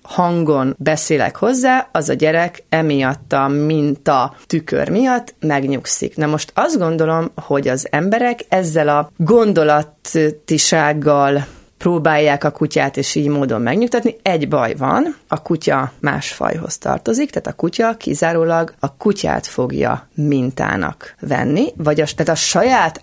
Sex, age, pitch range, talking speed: female, 30-49, 150-195 Hz, 135 wpm